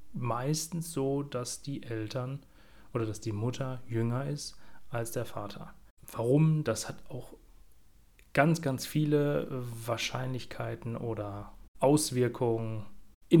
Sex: male